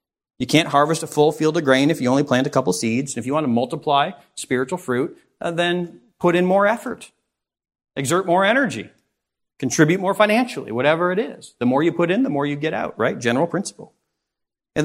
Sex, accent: male, American